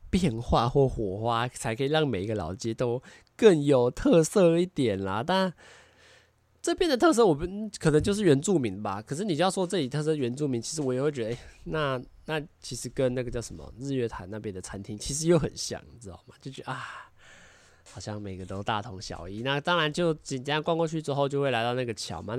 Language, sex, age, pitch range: Chinese, male, 20-39, 110-160 Hz